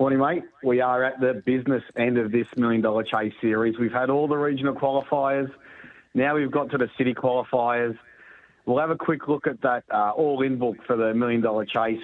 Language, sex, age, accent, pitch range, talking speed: English, male, 30-49, Australian, 120-140 Hz, 210 wpm